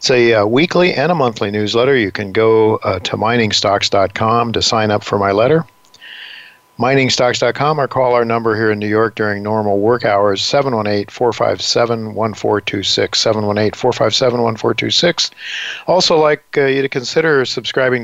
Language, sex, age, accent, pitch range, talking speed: English, male, 50-69, American, 110-125 Hz, 140 wpm